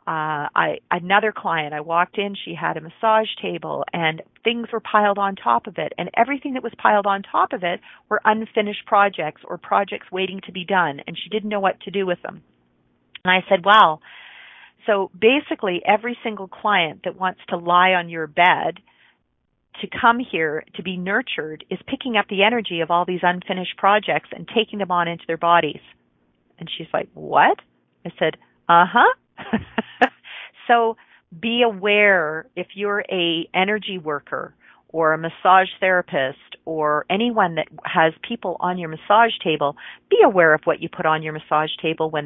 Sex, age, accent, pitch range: female, 40-59, American, 160-215 Hz